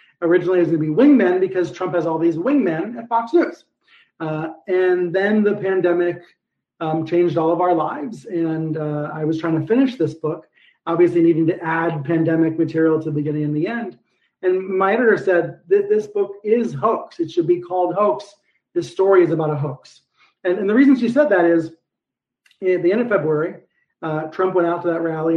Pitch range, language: 165-215 Hz, English